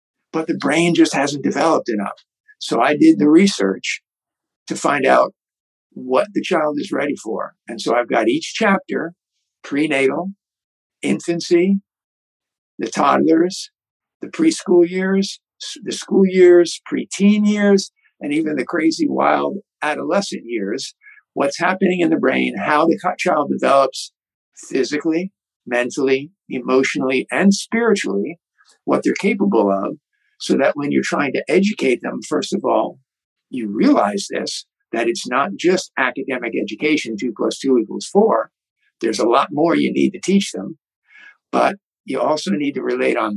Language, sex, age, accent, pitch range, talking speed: English, male, 60-79, American, 135-210 Hz, 145 wpm